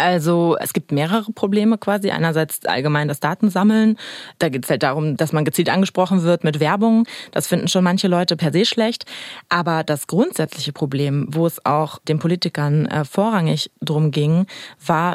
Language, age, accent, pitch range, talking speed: German, 20-39, German, 160-200 Hz, 175 wpm